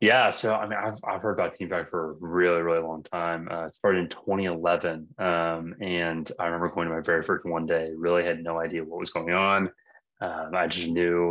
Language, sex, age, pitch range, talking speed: English, male, 20-39, 85-90 Hz, 235 wpm